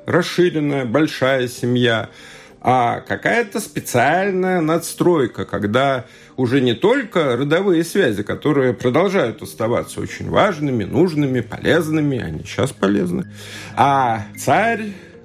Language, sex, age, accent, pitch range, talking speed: Russian, male, 50-69, native, 115-180 Hz, 100 wpm